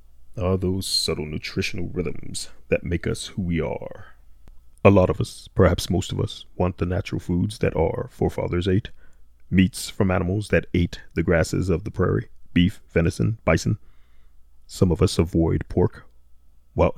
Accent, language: American, English